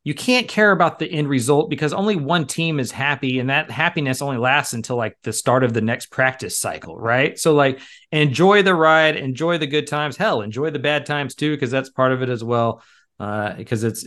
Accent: American